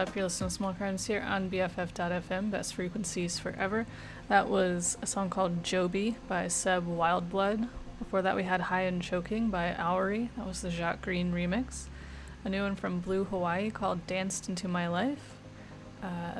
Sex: female